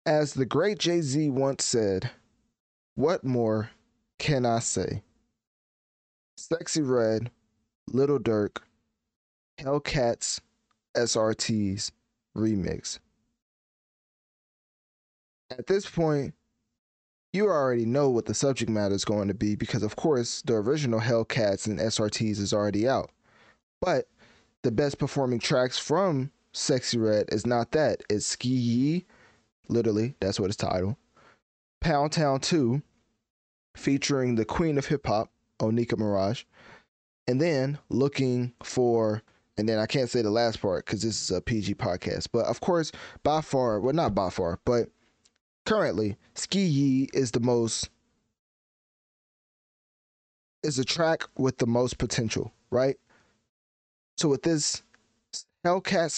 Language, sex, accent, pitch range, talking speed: English, male, American, 110-140 Hz, 125 wpm